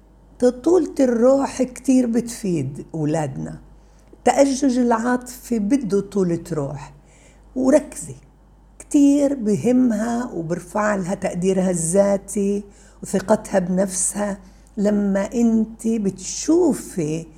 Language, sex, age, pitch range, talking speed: Arabic, female, 60-79, 175-250 Hz, 75 wpm